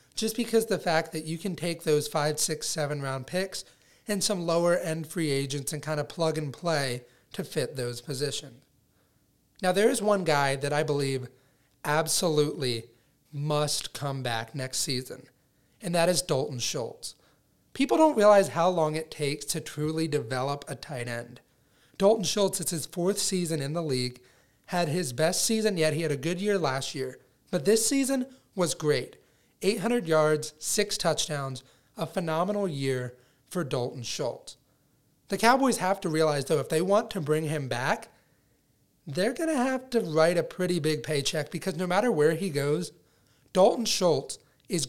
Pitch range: 140-185 Hz